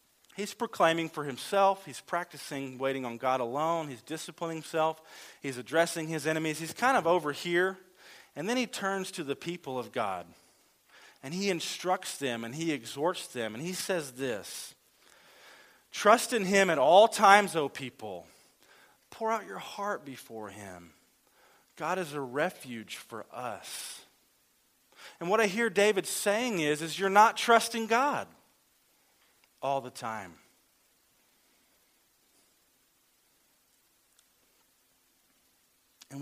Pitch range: 130-185 Hz